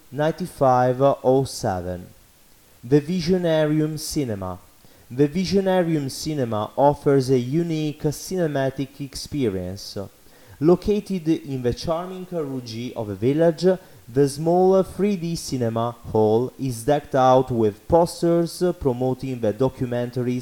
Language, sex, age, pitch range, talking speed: English, male, 30-49, 115-155 Hz, 95 wpm